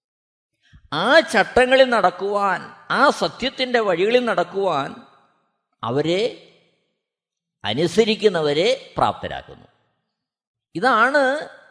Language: Malayalam